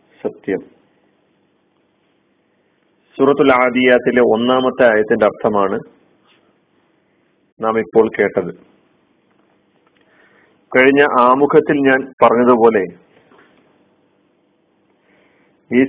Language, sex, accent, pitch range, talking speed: Malayalam, male, native, 115-140 Hz, 50 wpm